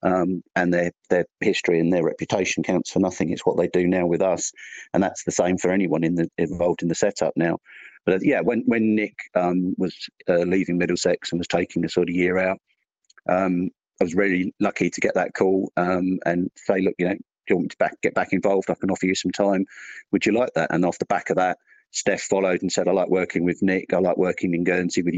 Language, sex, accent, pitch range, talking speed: English, male, British, 85-95 Hz, 250 wpm